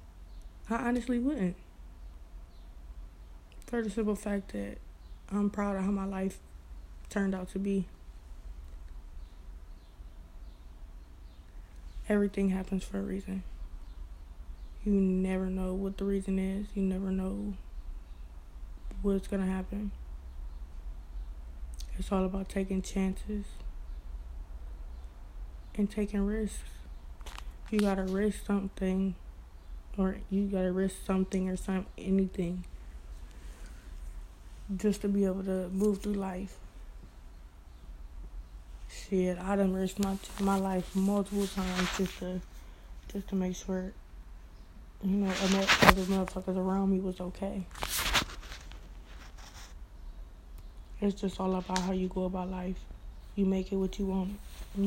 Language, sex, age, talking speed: English, female, 20-39, 115 wpm